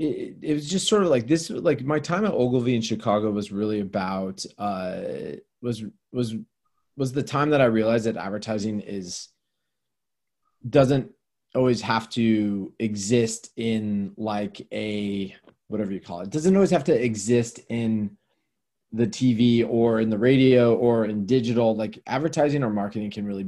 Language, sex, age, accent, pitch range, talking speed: English, male, 20-39, American, 105-125 Hz, 165 wpm